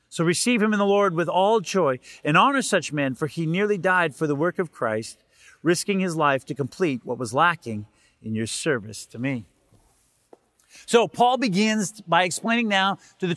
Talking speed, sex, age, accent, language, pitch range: 195 wpm, male, 40-59, American, English, 160-225 Hz